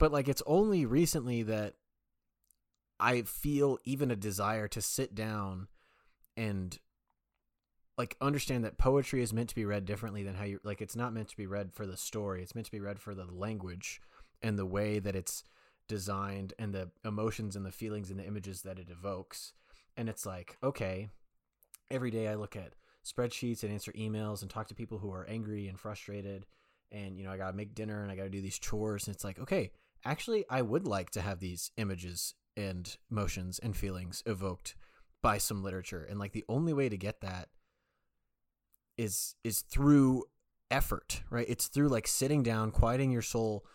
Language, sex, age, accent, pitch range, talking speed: English, male, 20-39, American, 100-120 Hz, 195 wpm